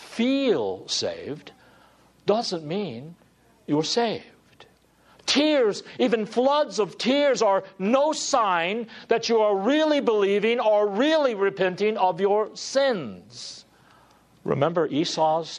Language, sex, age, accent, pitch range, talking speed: English, male, 60-79, American, 135-215 Hz, 110 wpm